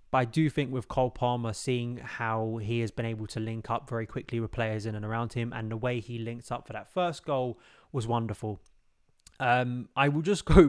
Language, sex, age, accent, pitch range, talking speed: English, male, 20-39, British, 110-130 Hz, 230 wpm